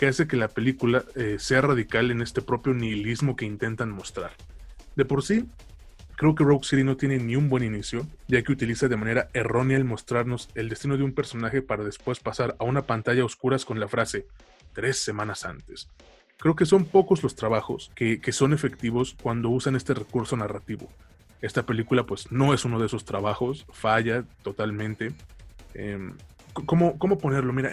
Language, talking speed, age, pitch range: Spanish, 185 wpm, 20-39, 110-140 Hz